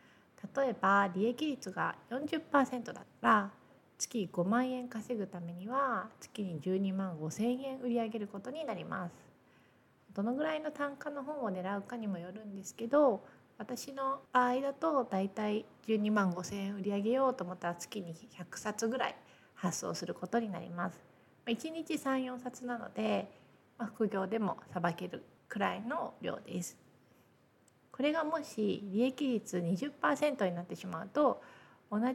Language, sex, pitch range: Japanese, female, 185-250 Hz